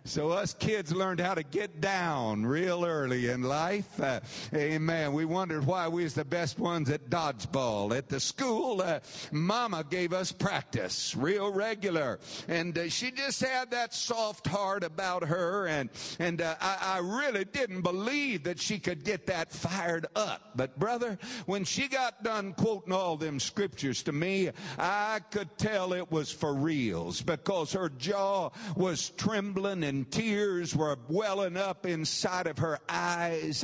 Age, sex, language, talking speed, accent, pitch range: 60-79, male, English, 165 wpm, American, 160-210 Hz